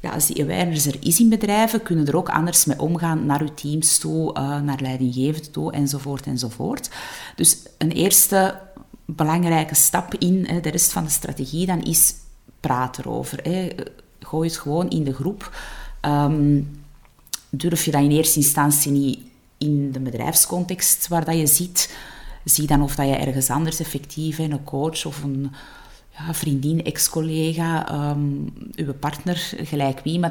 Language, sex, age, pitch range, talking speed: Dutch, female, 30-49, 140-170 Hz, 160 wpm